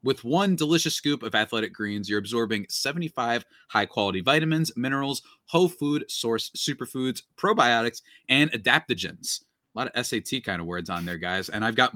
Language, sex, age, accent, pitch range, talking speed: English, male, 20-39, American, 100-140 Hz, 165 wpm